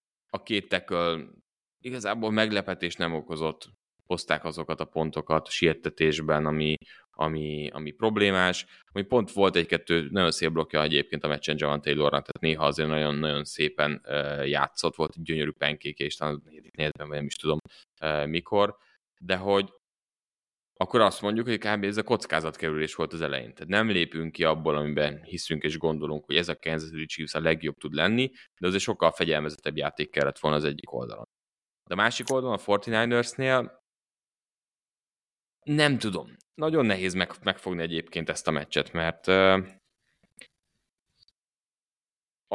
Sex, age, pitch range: male, 20-39, 75-100 Hz